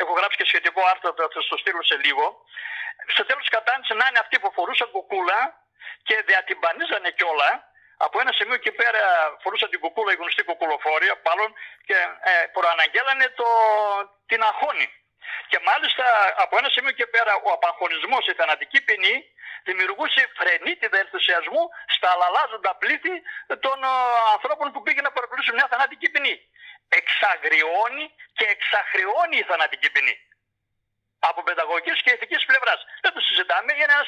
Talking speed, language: 145 wpm, Greek